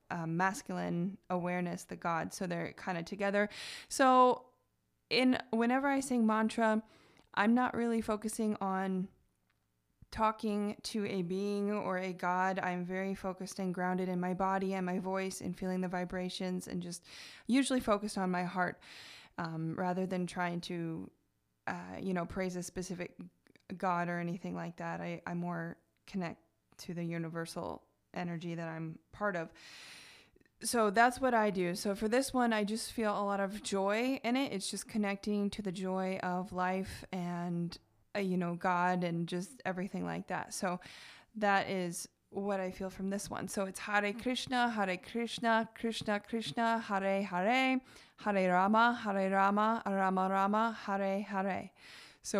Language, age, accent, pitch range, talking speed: English, 20-39, American, 180-215 Hz, 165 wpm